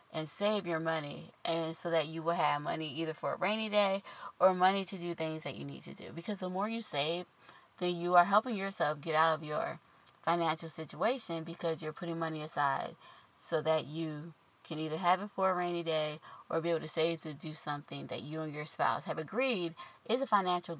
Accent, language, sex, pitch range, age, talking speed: American, English, female, 160-200 Hz, 20-39, 215 wpm